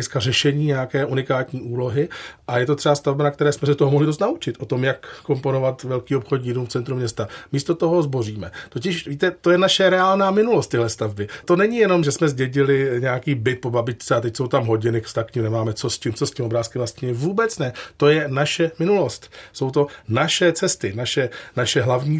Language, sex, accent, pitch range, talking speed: Czech, male, native, 125-150 Hz, 210 wpm